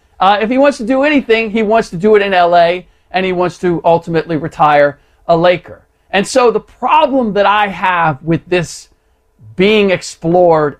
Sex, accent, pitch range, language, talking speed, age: male, American, 160-210 Hz, English, 185 wpm, 50-69